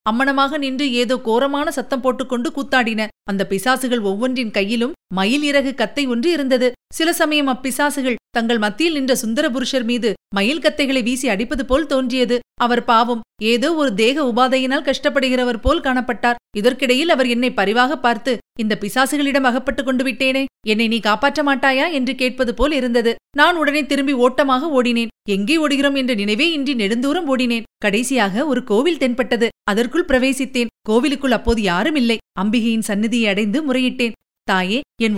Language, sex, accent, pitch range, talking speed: Tamil, female, native, 235-275 Hz, 145 wpm